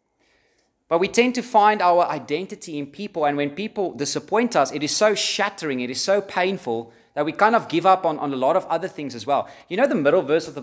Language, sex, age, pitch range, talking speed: English, male, 30-49, 145-200 Hz, 250 wpm